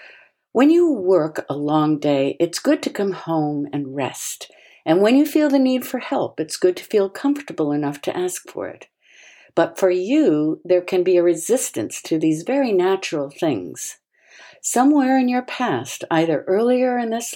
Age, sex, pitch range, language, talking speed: 60-79, female, 150-220 Hz, English, 180 wpm